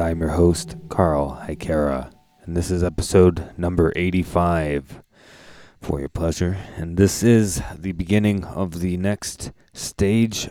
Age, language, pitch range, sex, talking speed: 20-39, English, 85-105 Hz, male, 130 wpm